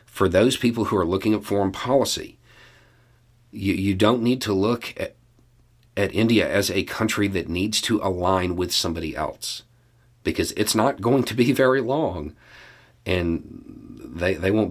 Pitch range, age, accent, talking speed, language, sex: 95-120 Hz, 40-59, American, 165 wpm, English, male